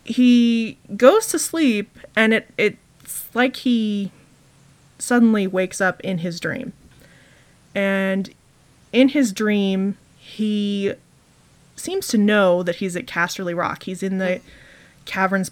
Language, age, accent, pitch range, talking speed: English, 20-39, American, 180-220 Hz, 120 wpm